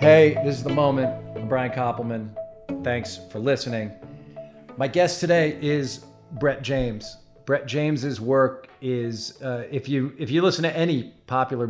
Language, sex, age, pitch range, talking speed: English, male, 40-59, 110-135 Hz, 155 wpm